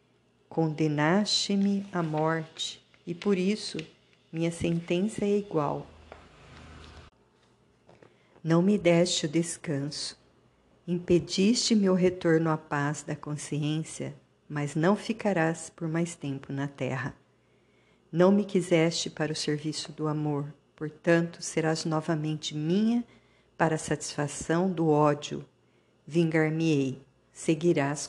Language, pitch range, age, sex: Portuguese, 145-175 Hz, 50-69, female